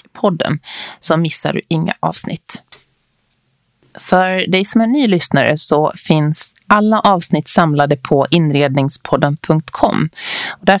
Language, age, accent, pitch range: Swedish, 30-49, native, 150-195 Hz